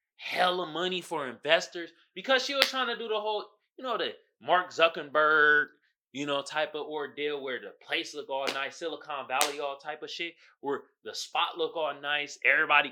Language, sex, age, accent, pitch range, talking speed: English, male, 20-39, American, 150-245 Hz, 190 wpm